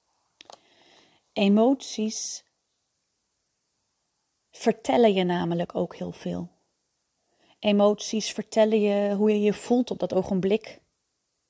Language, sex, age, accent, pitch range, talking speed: Dutch, female, 30-49, Dutch, 185-220 Hz, 90 wpm